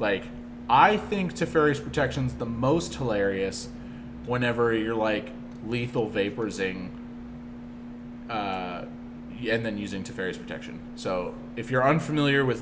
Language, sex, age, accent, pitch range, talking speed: English, male, 30-49, American, 120-135 Hz, 120 wpm